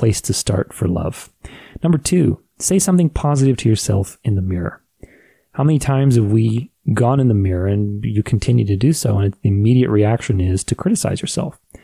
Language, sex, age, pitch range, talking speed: English, male, 30-49, 100-130 Hz, 195 wpm